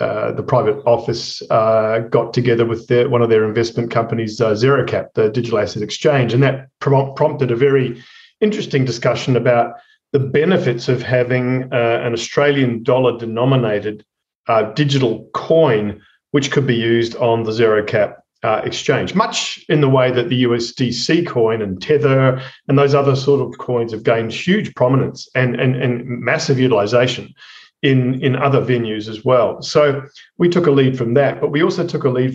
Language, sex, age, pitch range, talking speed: English, male, 40-59, 115-140 Hz, 170 wpm